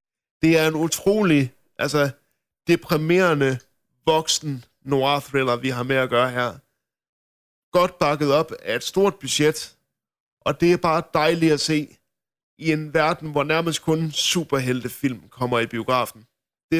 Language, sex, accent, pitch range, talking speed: Danish, male, native, 135-160 Hz, 145 wpm